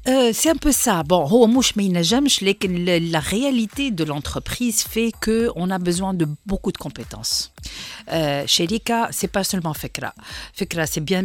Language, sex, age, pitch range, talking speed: Arabic, female, 50-69, 170-220 Hz, 170 wpm